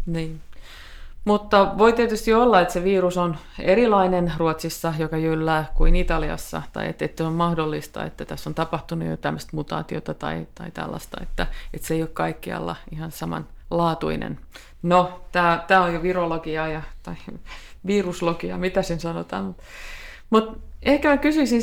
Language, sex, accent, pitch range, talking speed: Finnish, female, native, 160-190 Hz, 145 wpm